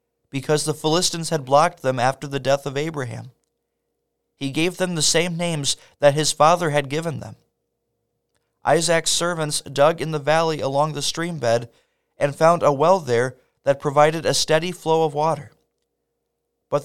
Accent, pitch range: American, 135-160 Hz